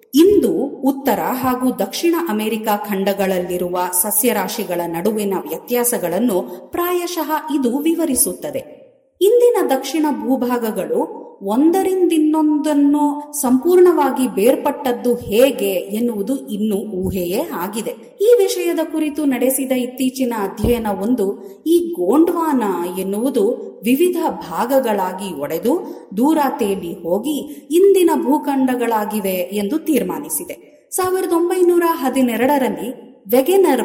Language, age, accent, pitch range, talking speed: Kannada, 30-49, native, 205-310 Hz, 80 wpm